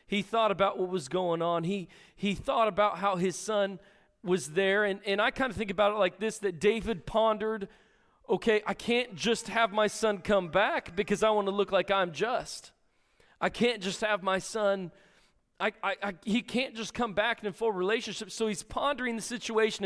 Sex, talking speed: male, 210 wpm